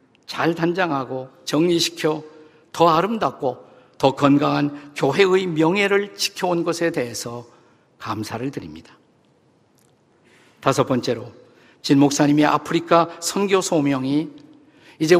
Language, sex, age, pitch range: Korean, male, 50-69, 140-170 Hz